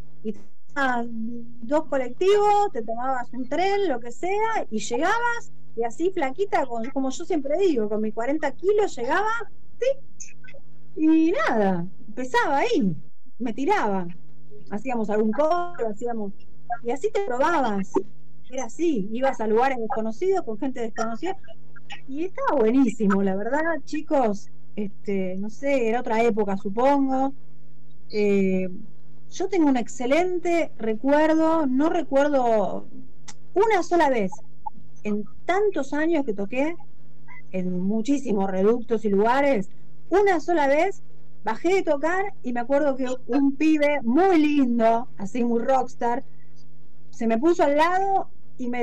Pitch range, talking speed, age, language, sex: 215-320 Hz, 135 wpm, 30-49, Spanish, female